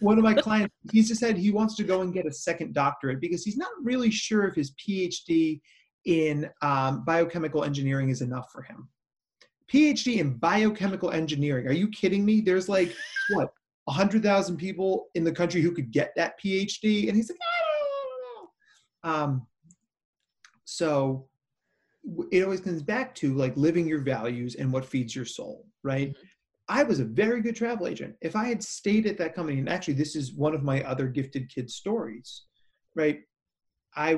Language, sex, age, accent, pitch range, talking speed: English, male, 30-49, American, 135-195 Hz, 185 wpm